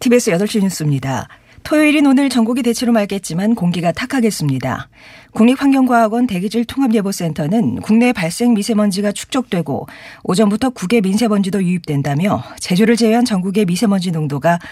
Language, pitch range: Korean, 165-240 Hz